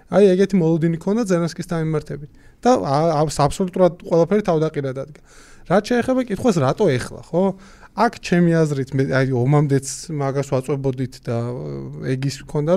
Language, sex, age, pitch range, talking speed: English, male, 30-49, 125-165 Hz, 135 wpm